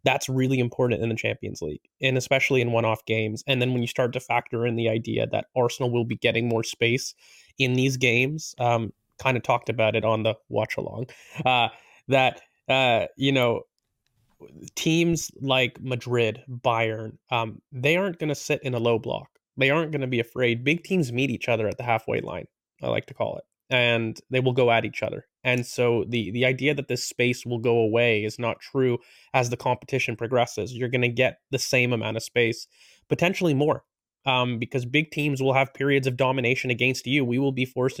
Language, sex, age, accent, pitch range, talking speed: English, male, 20-39, American, 115-135 Hz, 210 wpm